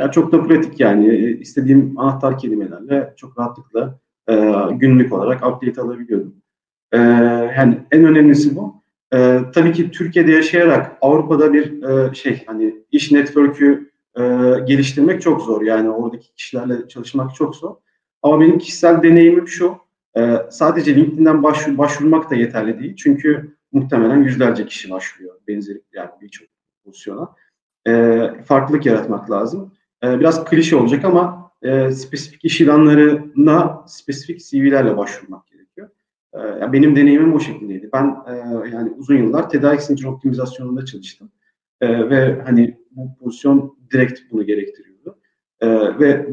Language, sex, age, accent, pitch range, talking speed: Turkish, male, 40-59, native, 125-155 Hz, 135 wpm